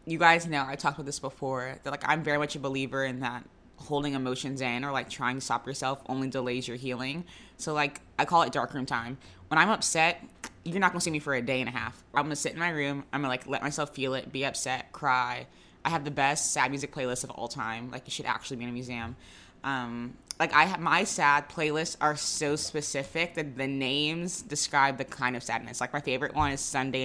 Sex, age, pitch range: female, 20-39, 125-150 Hz